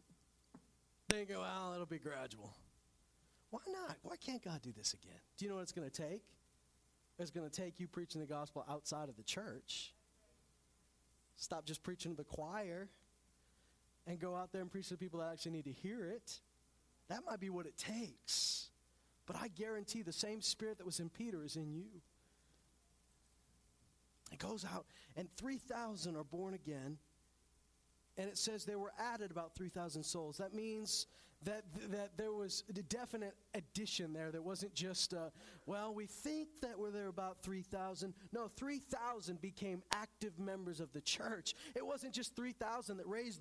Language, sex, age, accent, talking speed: English, male, 40-59, American, 175 wpm